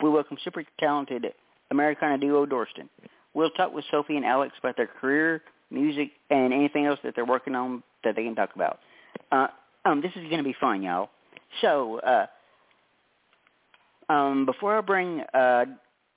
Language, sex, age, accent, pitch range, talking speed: English, male, 50-69, American, 125-150 Hz, 165 wpm